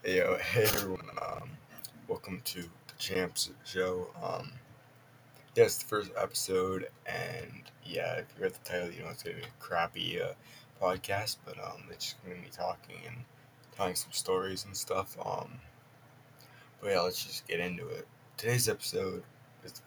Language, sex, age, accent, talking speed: English, male, 20-39, American, 175 wpm